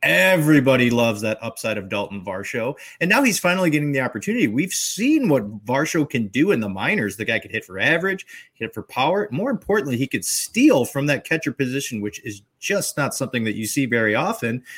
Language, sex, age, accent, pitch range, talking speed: English, male, 30-49, American, 115-170 Hz, 205 wpm